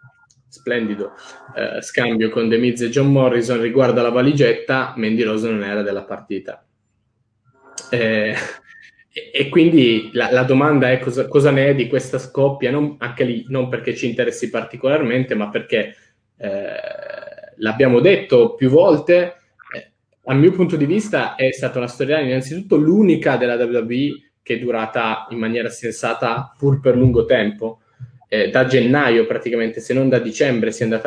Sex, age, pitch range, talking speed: male, 20-39, 115-140 Hz, 150 wpm